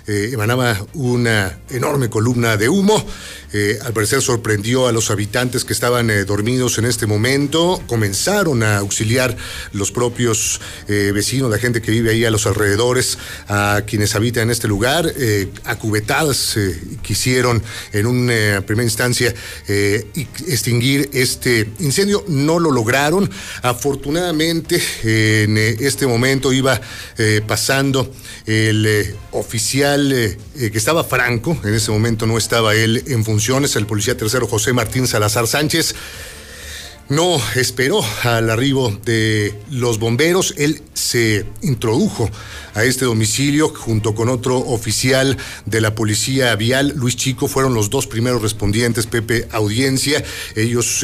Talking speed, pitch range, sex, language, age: 140 wpm, 105-130 Hz, male, Spanish, 40-59